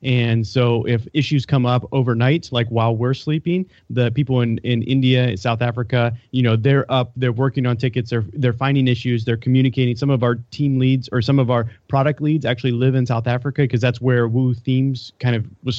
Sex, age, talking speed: male, 30-49, 215 wpm